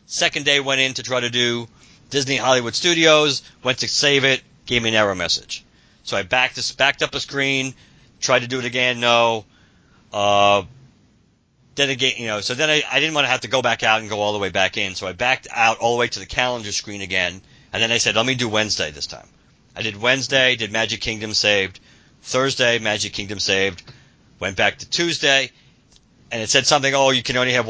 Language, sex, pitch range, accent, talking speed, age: English, male, 100-130 Hz, American, 225 wpm, 40-59